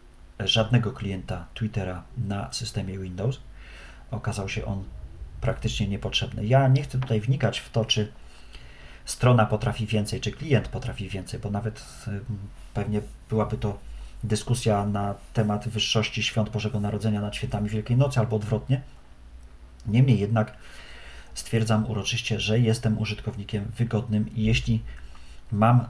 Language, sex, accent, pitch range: Polish, male, native, 100-120 Hz